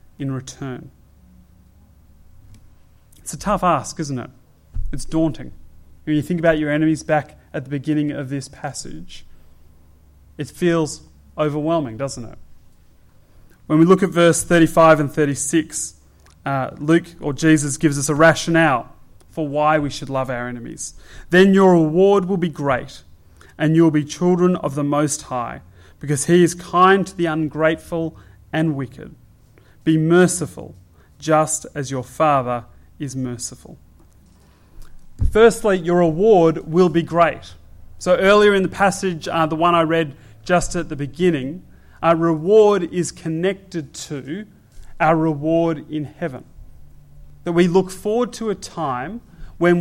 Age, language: 30-49, English